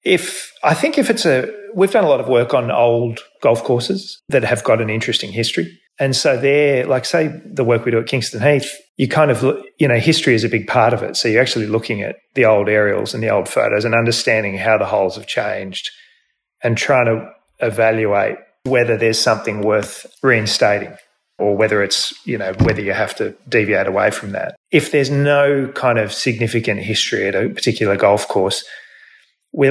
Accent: Australian